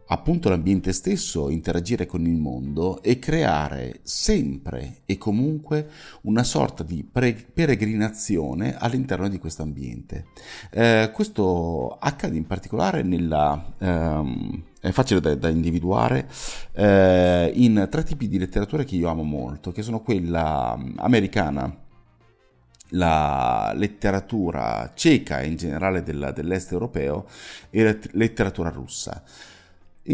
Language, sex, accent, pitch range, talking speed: Italian, male, native, 80-105 Hz, 120 wpm